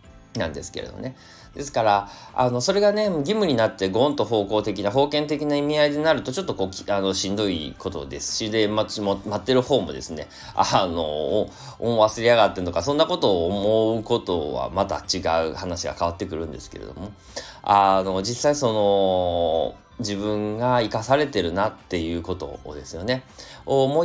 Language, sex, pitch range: Japanese, male, 85-115 Hz